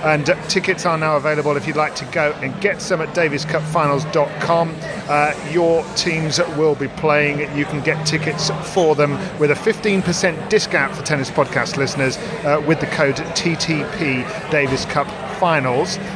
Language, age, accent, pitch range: English, 40-59, British, 145-180 Hz